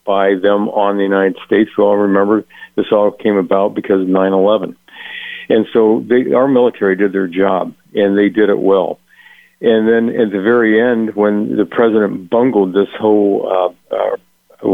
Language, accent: English, American